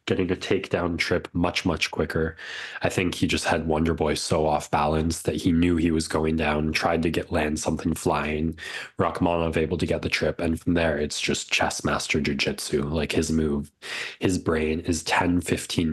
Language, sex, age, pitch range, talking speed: English, male, 20-39, 80-90 Hz, 190 wpm